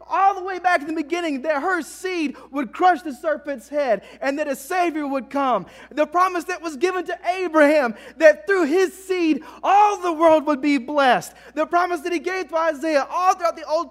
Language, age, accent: English, 30-49, American